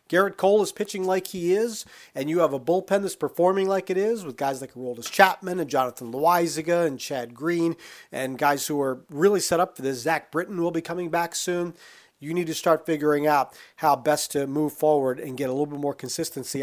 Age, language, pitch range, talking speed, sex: 40-59, English, 140-180 Hz, 225 wpm, male